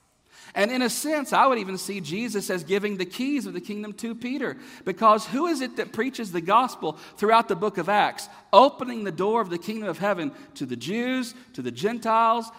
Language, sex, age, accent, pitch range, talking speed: English, male, 50-69, American, 160-230 Hz, 215 wpm